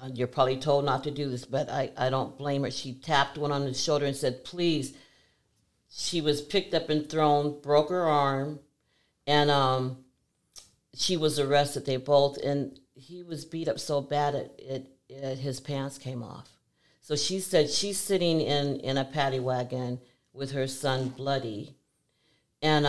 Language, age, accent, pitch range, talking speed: English, 50-69, American, 125-145 Hz, 175 wpm